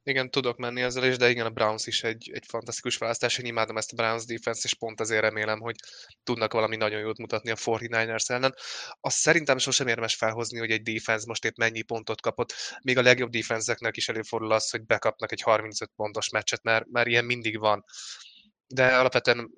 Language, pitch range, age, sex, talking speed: Hungarian, 110-120 Hz, 20-39, male, 200 wpm